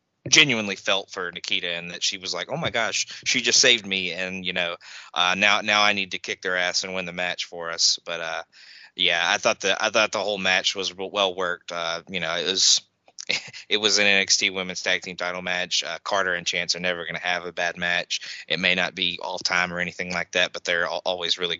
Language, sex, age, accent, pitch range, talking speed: English, male, 20-39, American, 90-100 Hz, 245 wpm